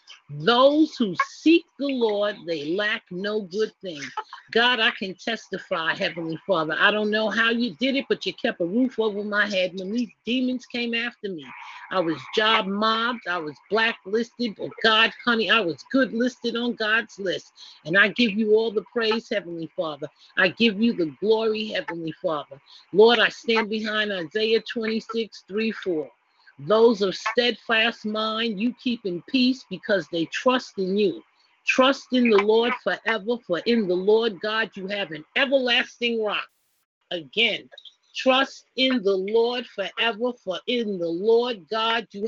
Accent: American